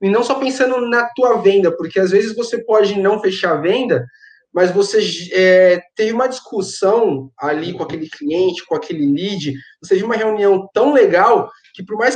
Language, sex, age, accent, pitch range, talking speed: Portuguese, male, 20-39, Brazilian, 175-240 Hz, 185 wpm